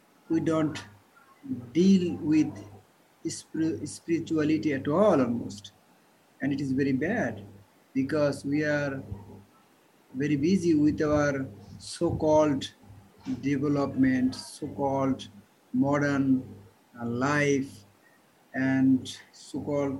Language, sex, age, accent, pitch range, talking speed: English, male, 60-79, Indian, 130-155 Hz, 90 wpm